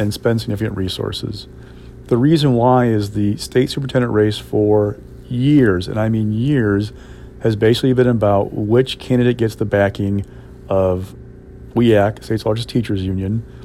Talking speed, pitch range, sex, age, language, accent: 145 wpm, 105-125 Hz, male, 40-59, English, American